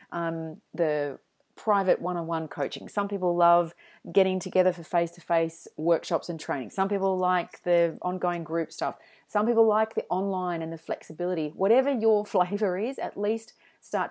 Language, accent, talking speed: English, Australian, 155 wpm